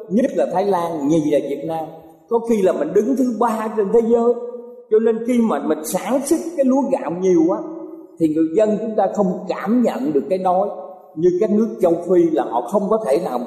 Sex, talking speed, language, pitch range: male, 230 wpm, Vietnamese, 185-285 Hz